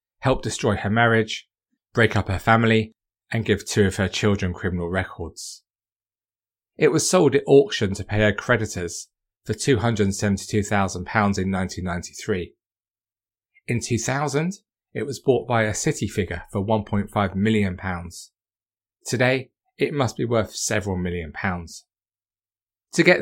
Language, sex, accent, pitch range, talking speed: English, male, British, 100-120 Hz, 130 wpm